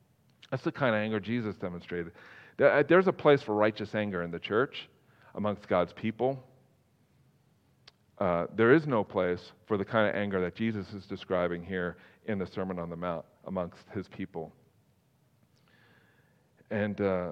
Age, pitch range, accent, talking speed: 40-59, 105-135 Hz, American, 150 wpm